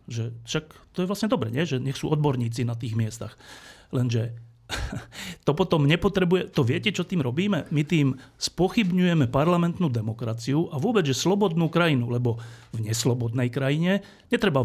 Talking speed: 150 wpm